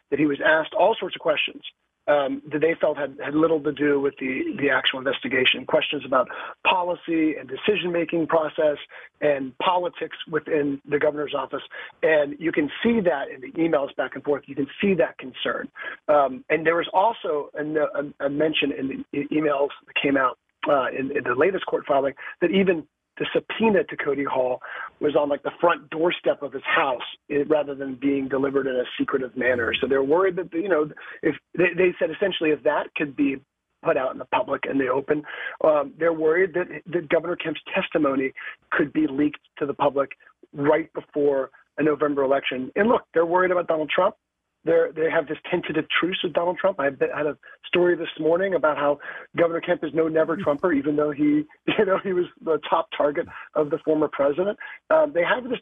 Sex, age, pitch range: male, 40-59, 145-180 Hz